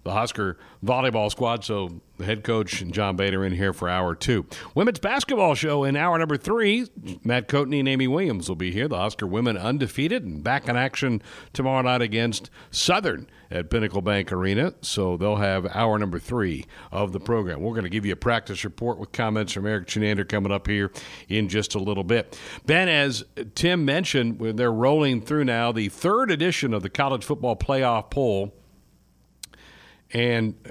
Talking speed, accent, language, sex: 185 wpm, American, English, male